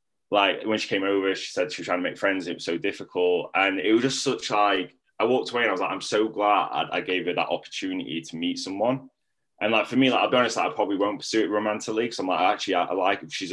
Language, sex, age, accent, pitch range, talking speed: English, male, 10-29, British, 90-135 Hz, 290 wpm